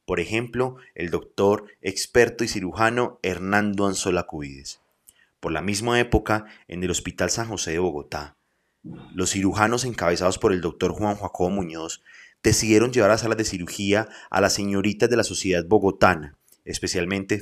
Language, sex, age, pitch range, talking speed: Spanish, male, 30-49, 85-105 Hz, 150 wpm